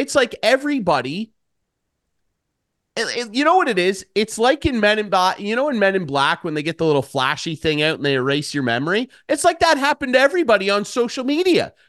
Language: English